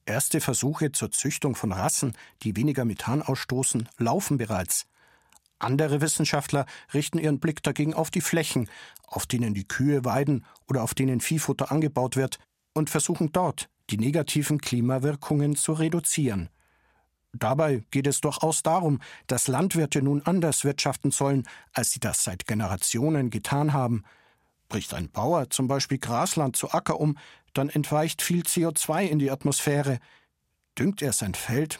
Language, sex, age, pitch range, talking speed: German, male, 50-69, 125-155 Hz, 145 wpm